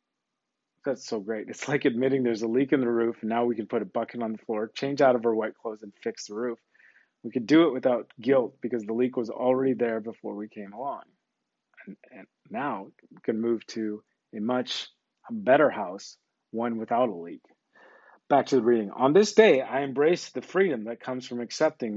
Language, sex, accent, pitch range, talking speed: English, male, American, 115-155 Hz, 215 wpm